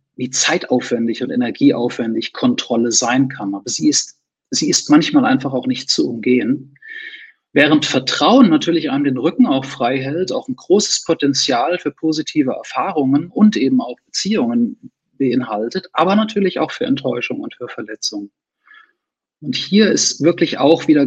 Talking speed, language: 150 wpm, English